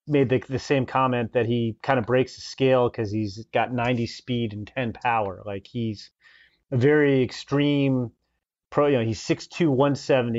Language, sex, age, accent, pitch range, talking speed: English, male, 30-49, American, 120-145 Hz, 180 wpm